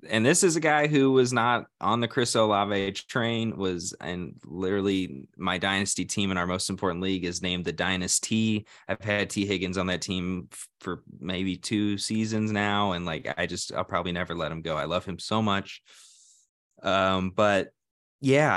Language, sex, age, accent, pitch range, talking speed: English, male, 20-39, American, 90-105 Hz, 185 wpm